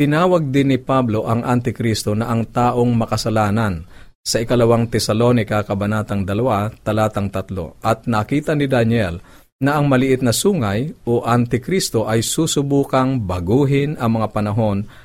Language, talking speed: Filipino, 135 wpm